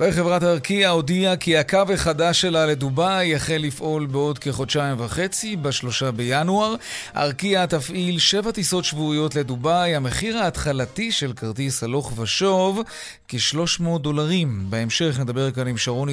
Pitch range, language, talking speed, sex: 135-175 Hz, Hebrew, 125 wpm, male